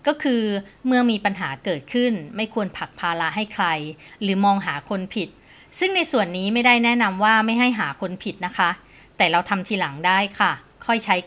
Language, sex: Thai, female